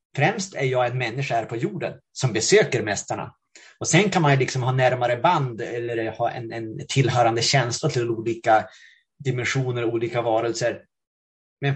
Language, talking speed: Swedish, 165 wpm